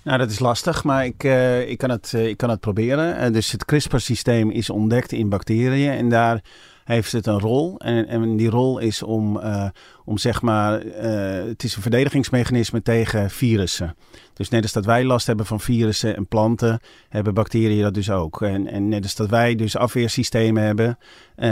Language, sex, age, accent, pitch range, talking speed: Dutch, male, 40-59, Dutch, 105-120 Hz, 185 wpm